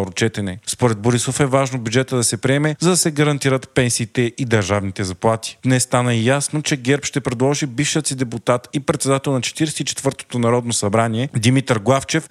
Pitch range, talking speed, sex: 110-135 Hz, 175 wpm, male